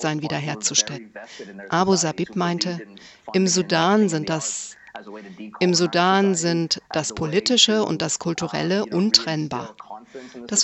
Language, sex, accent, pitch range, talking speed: German, female, German, 160-195 Hz, 85 wpm